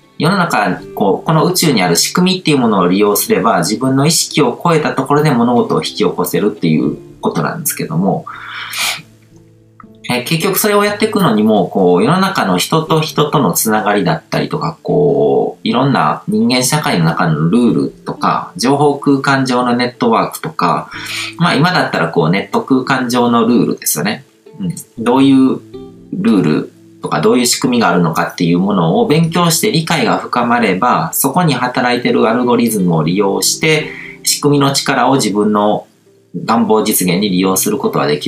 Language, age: Japanese, 40-59